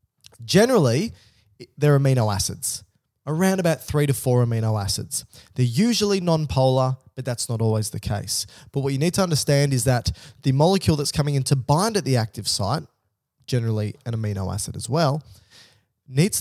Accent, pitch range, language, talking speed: Australian, 115-150 Hz, English, 170 wpm